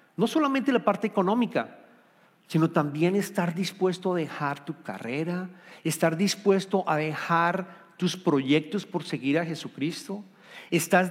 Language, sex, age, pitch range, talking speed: Spanish, male, 50-69, 155-205 Hz, 130 wpm